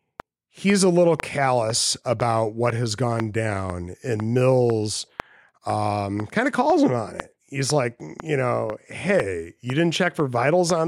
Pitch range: 100-135 Hz